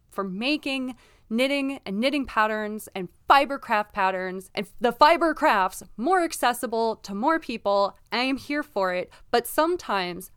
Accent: American